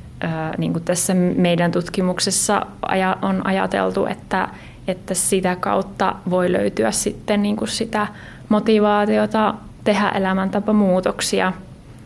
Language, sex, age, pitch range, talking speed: Finnish, female, 30-49, 175-205 Hz, 80 wpm